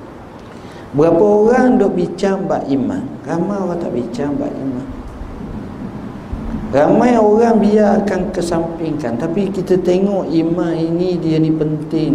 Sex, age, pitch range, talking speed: male, 50-69, 130-185 Hz, 115 wpm